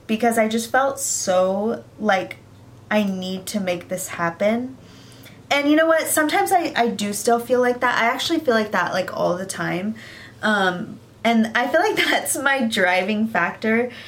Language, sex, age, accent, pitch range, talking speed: English, female, 20-39, American, 190-235 Hz, 180 wpm